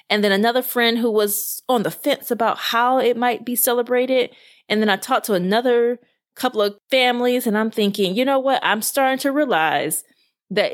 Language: English